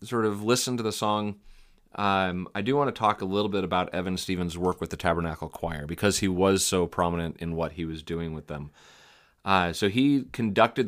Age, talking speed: 30-49, 215 wpm